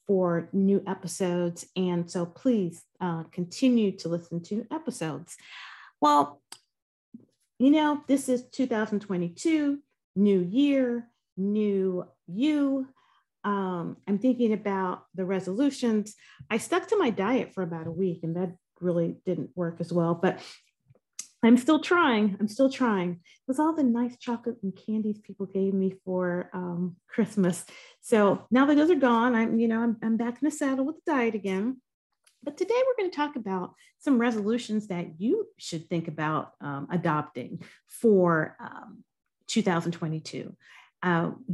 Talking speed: 145 wpm